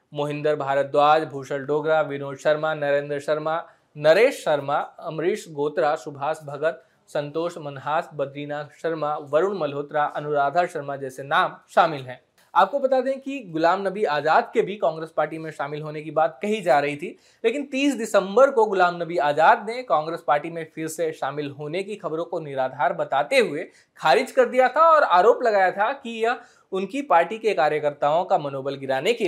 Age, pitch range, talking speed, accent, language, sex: 20-39, 150-215 Hz, 90 wpm, native, Hindi, male